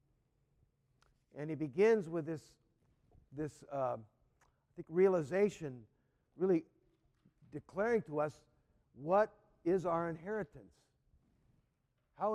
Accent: American